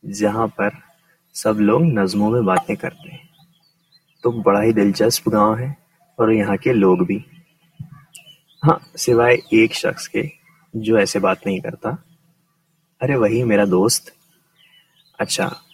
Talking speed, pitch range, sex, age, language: 130 wpm, 115-165 Hz, male, 20-39, Urdu